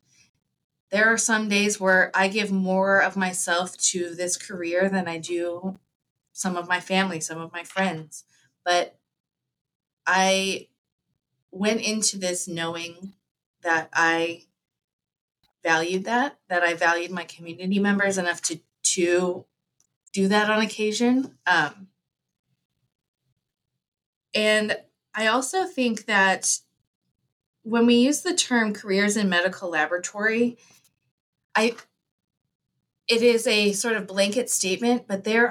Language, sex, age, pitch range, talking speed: English, female, 20-39, 170-205 Hz, 120 wpm